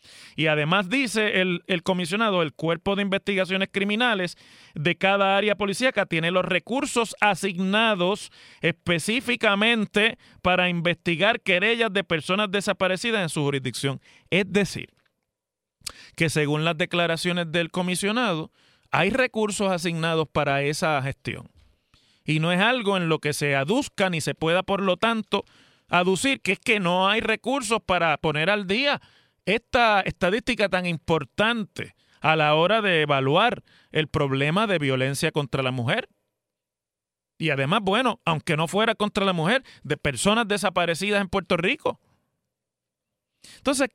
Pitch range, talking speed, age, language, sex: 165-215 Hz, 140 wpm, 30-49, Spanish, male